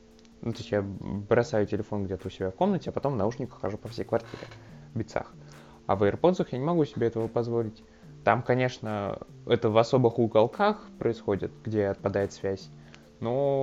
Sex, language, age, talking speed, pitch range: male, Russian, 20-39, 170 wpm, 100-125 Hz